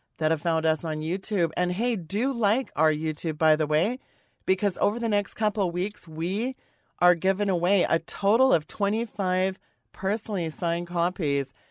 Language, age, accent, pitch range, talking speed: English, 40-59, American, 155-190 Hz, 170 wpm